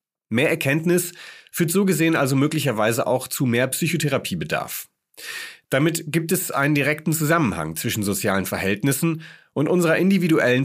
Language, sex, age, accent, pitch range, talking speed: German, male, 40-59, German, 115-160 Hz, 130 wpm